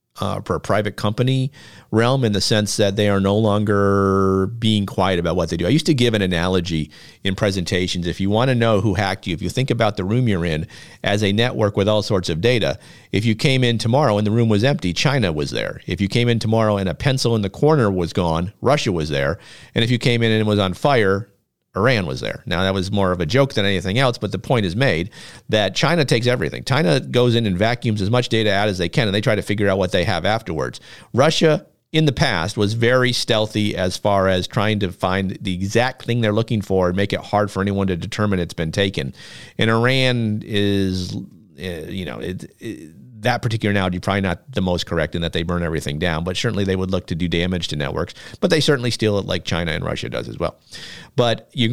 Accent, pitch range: American, 90-115 Hz